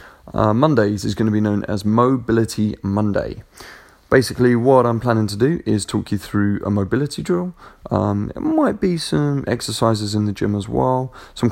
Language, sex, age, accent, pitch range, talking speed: English, male, 20-39, British, 105-135 Hz, 180 wpm